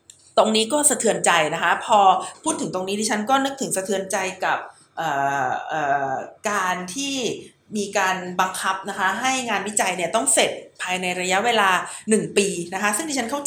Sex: female